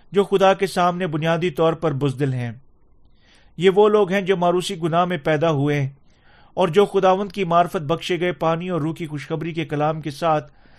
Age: 40-59